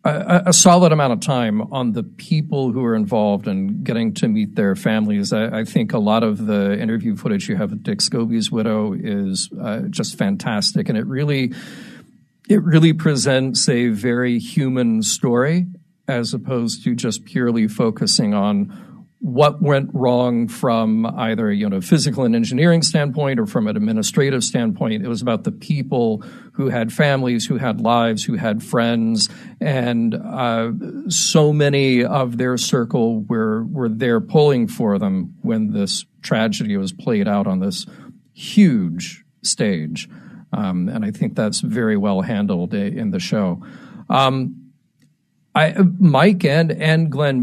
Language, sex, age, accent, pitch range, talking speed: English, male, 50-69, American, 125-200 Hz, 155 wpm